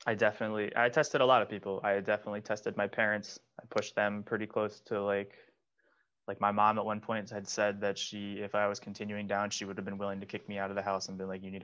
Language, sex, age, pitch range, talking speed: English, male, 20-39, 95-105 Hz, 270 wpm